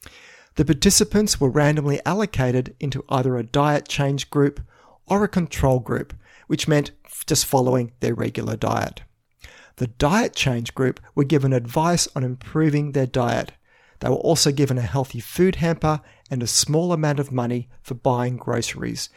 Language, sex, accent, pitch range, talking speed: English, male, Australian, 125-155 Hz, 155 wpm